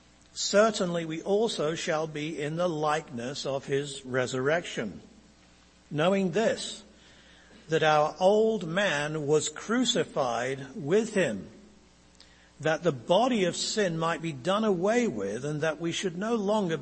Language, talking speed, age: English, 130 wpm, 60-79